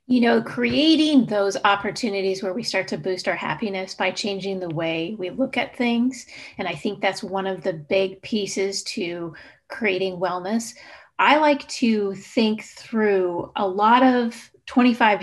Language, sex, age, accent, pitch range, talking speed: English, female, 30-49, American, 190-235 Hz, 160 wpm